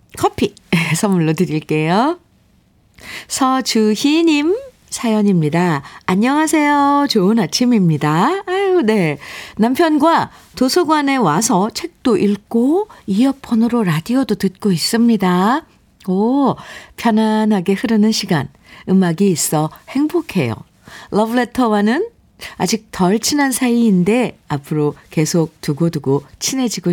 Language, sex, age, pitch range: Korean, female, 50-69, 165-245 Hz